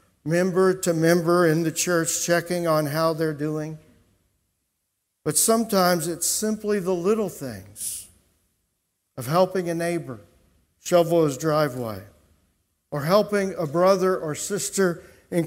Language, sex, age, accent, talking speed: English, male, 50-69, American, 125 wpm